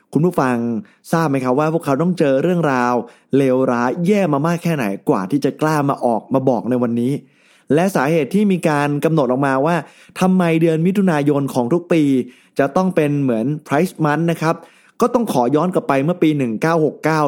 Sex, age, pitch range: male, 20-39, 130-170 Hz